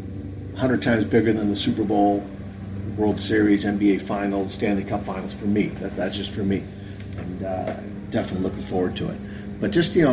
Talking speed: 180 wpm